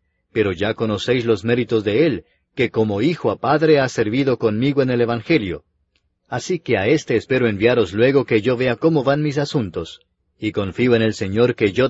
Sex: male